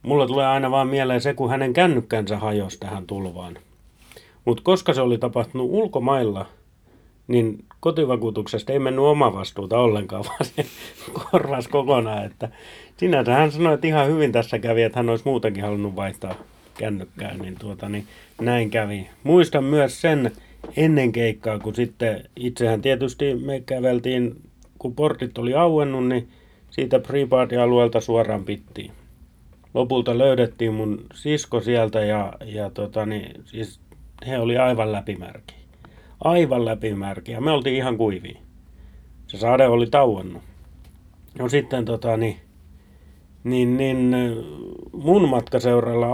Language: Finnish